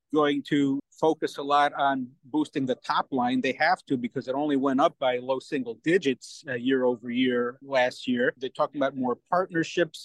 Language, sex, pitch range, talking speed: English, male, 135-170 Hz, 190 wpm